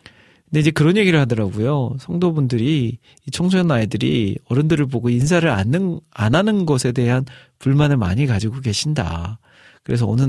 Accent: native